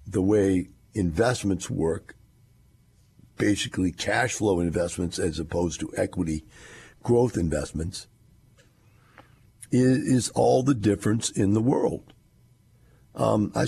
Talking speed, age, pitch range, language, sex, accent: 100 wpm, 60-79, 85-115 Hz, English, male, American